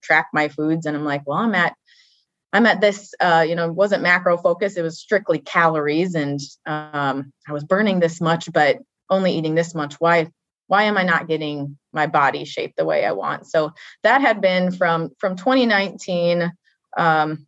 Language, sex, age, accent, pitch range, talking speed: English, female, 20-39, American, 155-180 Hz, 190 wpm